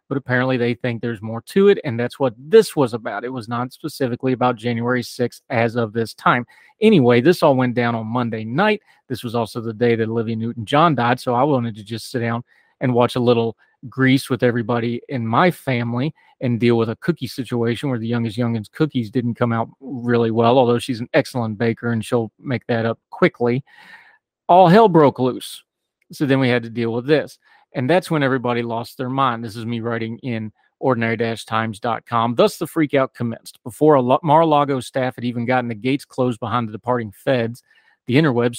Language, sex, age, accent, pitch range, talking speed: English, male, 30-49, American, 115-135 Hz, 205 wpm